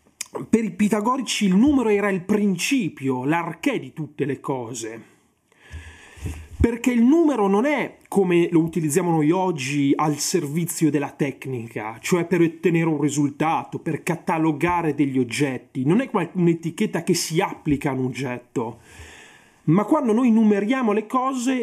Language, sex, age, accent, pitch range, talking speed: Italian, male, 30-49, native, 145-230 Hz, 140 wpm